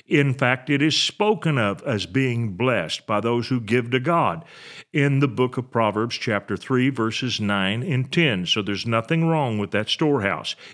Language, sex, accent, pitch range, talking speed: English, male, American, 115-145 Hz, 185 wpm